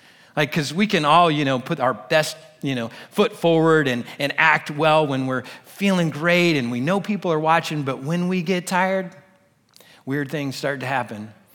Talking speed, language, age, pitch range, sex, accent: 195 wpm, English, 40-59, 130-170 Hz, male, American